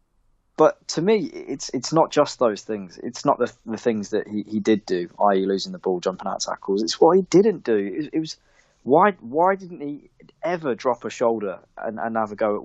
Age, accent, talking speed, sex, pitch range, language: 20-39, British, 230 wpm, male, 100-145 Hz, English